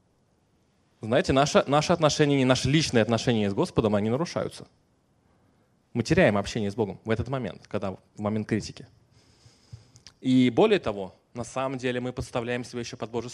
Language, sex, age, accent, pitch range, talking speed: Russian, male, 20-39, native, 110-140 Hz, 155 wpm